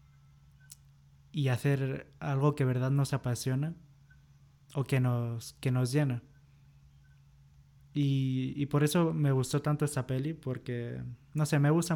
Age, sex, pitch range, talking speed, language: 20-39, male, 125-140 Hz, 130 wpm, Spanish